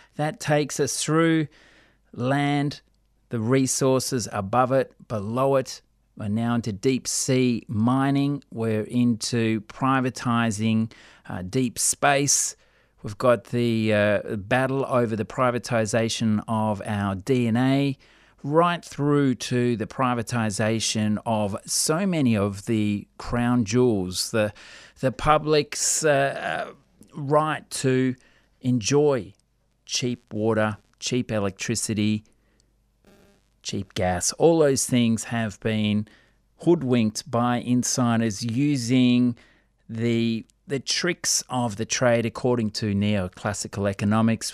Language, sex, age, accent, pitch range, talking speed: English, male, 40-59, Australian, 110-130 Hz, 105 wpm